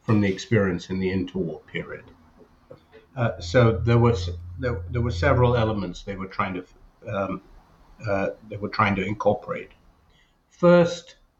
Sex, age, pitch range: male, 60-79, 100-125 Hz